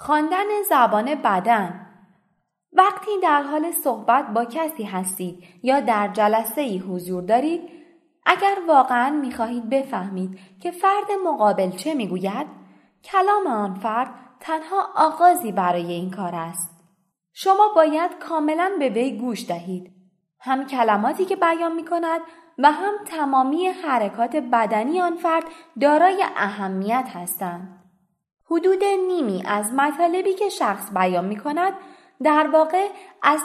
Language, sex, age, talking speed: Persian, female, 20-39, 120 wpm